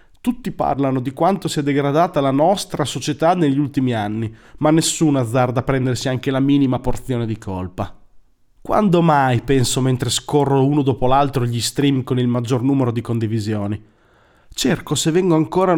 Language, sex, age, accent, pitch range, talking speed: Italian, male, 30-49, native, 120-160 Hz, 165 wpm